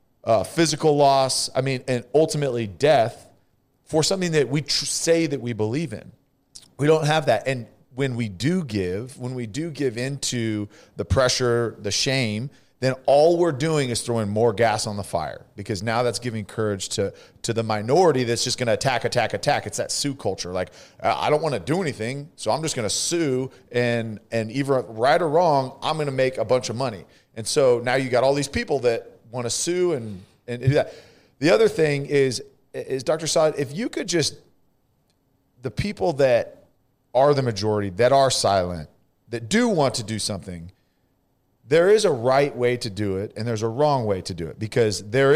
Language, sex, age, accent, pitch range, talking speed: English, male, 40-59, American, 110-145 Hz, 200 wpm